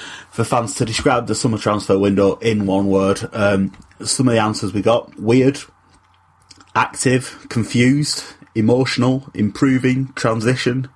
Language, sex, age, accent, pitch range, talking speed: English, male, 30-49, British, 110-140 Hz, 130 wpm